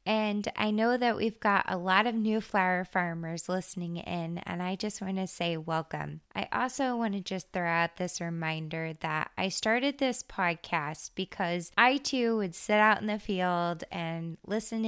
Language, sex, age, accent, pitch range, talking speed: English, female, 20-39, American, 175-225 Hz, 185 wpm